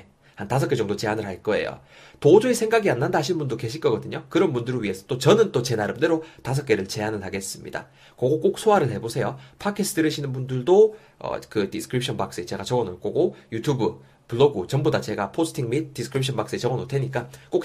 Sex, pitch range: male, 105-160 Hz